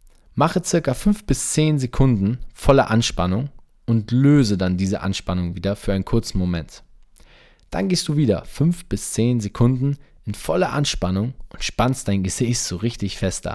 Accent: German